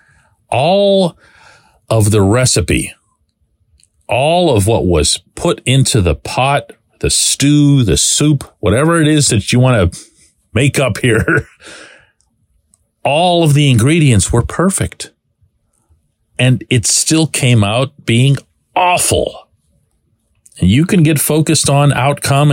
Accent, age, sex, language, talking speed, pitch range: American, 40-59, male, English, 125 wpm, 95-135 Hz